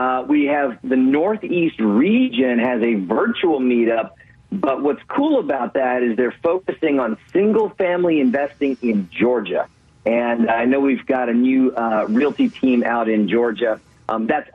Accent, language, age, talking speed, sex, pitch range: American, English, 40-59, 155 wpm, male, 120-195 Hz